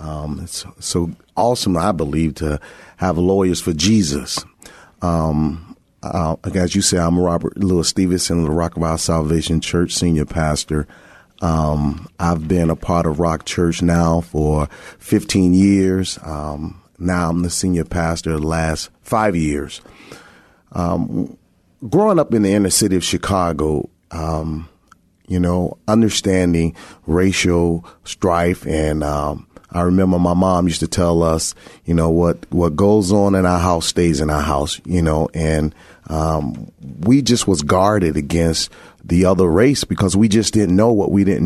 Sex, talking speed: male, 155 wpm